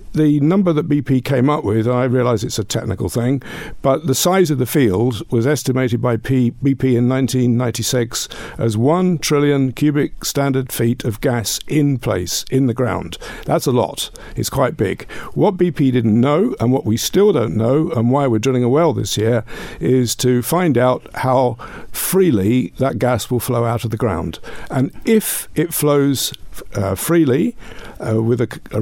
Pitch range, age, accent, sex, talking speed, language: 115-145 Hz, 50-69, British, male, 185 wpm, English